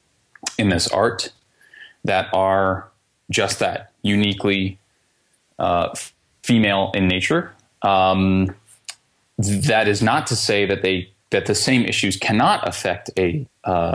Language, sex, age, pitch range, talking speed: English, male, 20-39, 95-115 Hz, 120 wpm